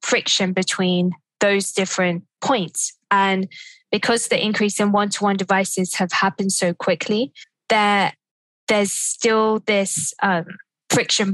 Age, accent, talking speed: 10-29, British, 115 wpm